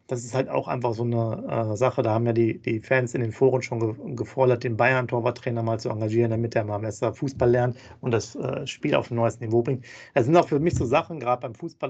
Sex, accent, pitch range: male, German, 115-130 Hz